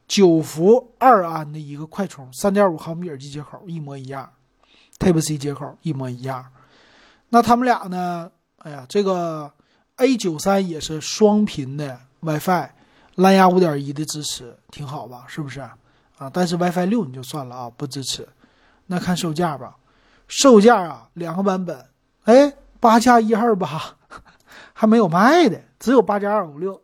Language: Chinese